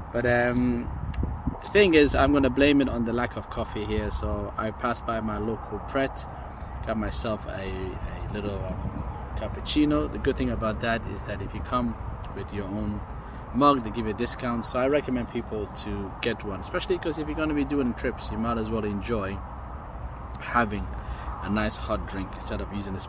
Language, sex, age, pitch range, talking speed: English, male, 20-39, 100-125 Hz, 205 wpm